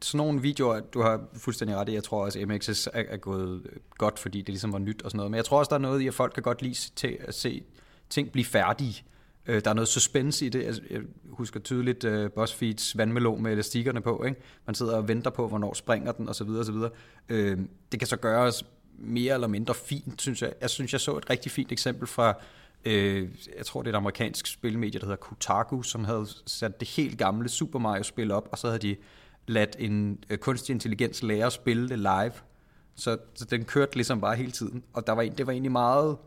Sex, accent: male, native